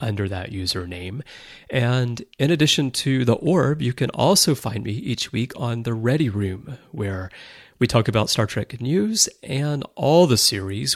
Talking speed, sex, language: 170 wpm, male, English